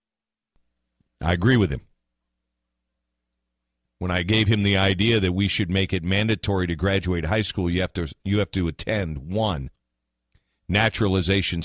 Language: English